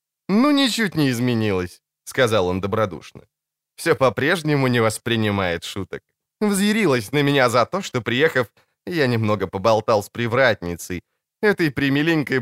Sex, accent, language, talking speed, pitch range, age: male, native, Ukrainian, 125 wpm, 110-160 Hz, 20-39